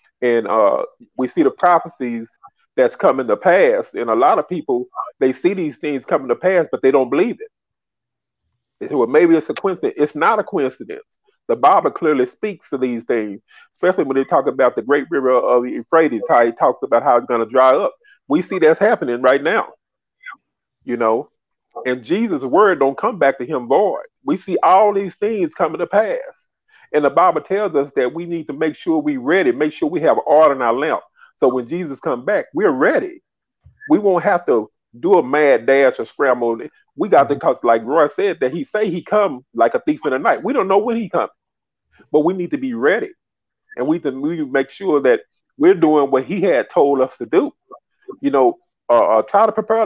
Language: English